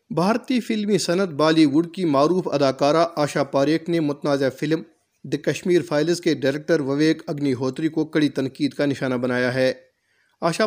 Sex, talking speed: male, 165 wpm